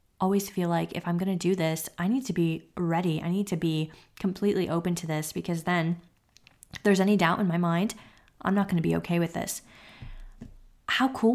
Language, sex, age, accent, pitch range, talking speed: English, female, 20-39, American, 165-190 Hz, 215 wpm